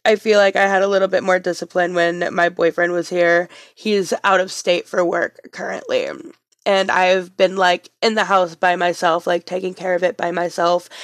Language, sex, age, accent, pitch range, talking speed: English, female, 20-39, American, 180-210 Hz, 205 wpm